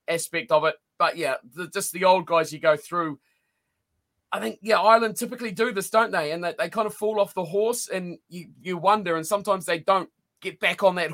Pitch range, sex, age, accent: 170-225 Hz, male, 30-49, Australian